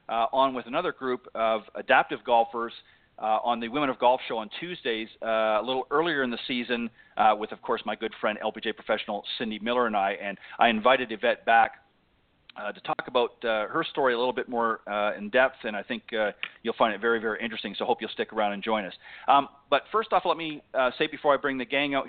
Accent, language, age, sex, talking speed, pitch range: American, English, 40-59, male, 240 wpm, 115-140 Hz